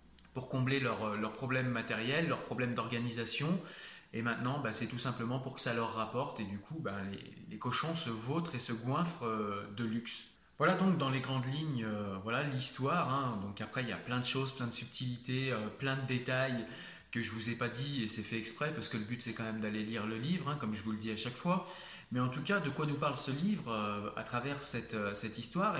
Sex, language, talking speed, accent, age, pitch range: male, French, 250 wpm, French, 20-39, 115-145 Hz